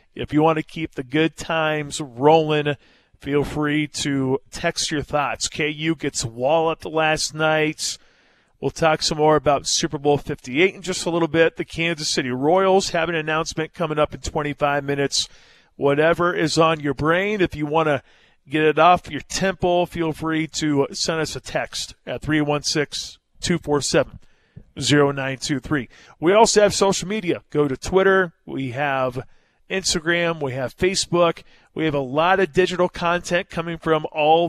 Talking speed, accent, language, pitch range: 160 wpm, American, English, 140-165 Hz